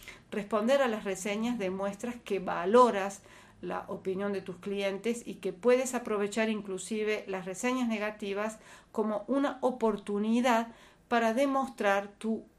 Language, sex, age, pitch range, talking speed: Spanish, female, 50-69, 195-245 Hz, 125 wpm